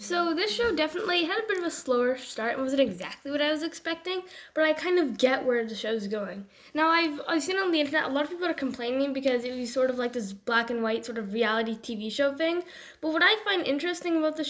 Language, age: English, 10-29